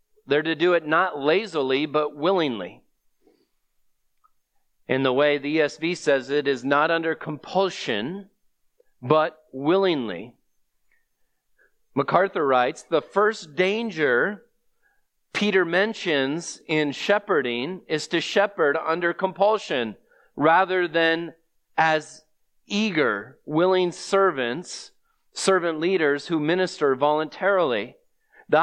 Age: 40-59